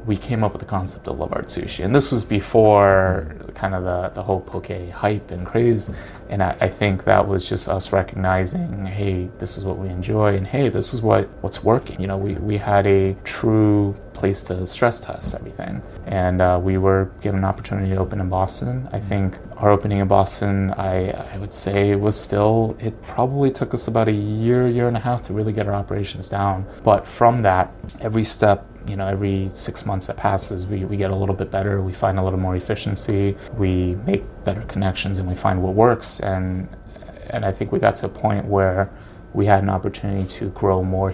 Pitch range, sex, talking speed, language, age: 95-105 Hz, male, 215 wpm, English, 30-49